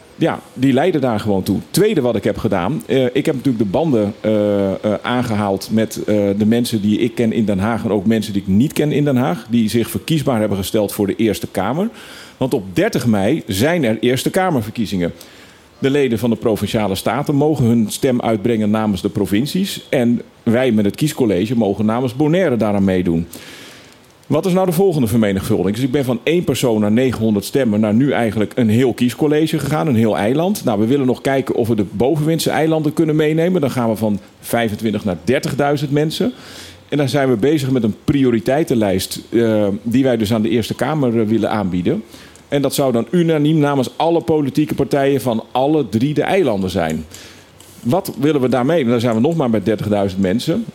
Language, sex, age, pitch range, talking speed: Dutch, male, 40-59, 105-140 Hz, 200 wpm